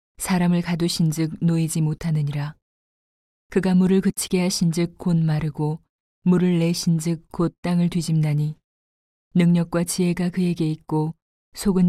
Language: Korean